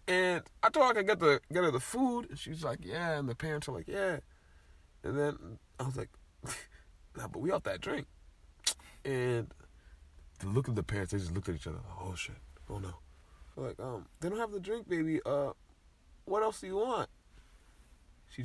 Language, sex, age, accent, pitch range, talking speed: English, male, 20-39, American, 85-145 Hz, 220 wpm